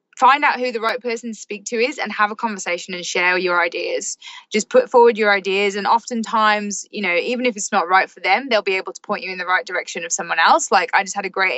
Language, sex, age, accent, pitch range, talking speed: English, female, 20-39, British, 195-240 Hz, 275 wpm